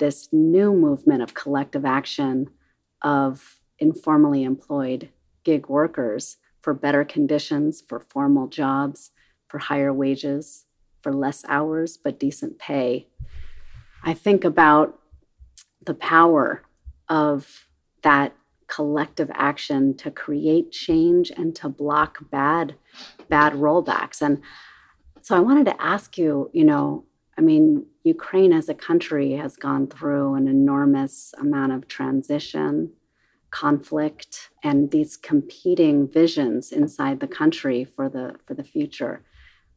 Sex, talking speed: female, 120 wpm